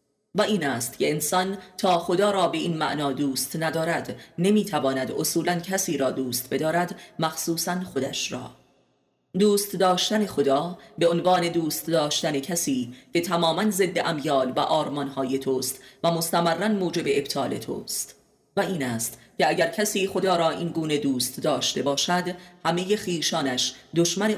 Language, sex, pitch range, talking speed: Persian, female, 140-185 Hz, 145 wpm